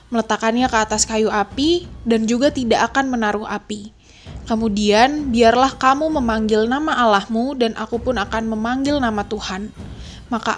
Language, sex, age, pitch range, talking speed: Indonesian, female, 20-39, 215-265 Hz, 140 wpm